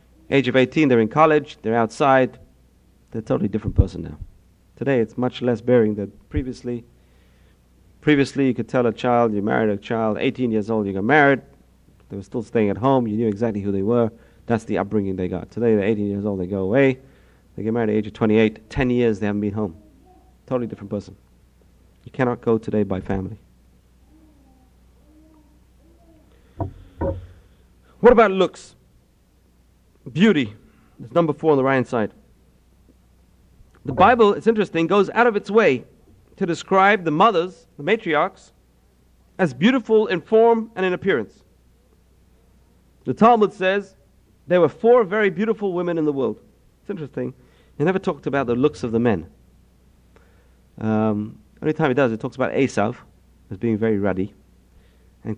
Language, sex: English, male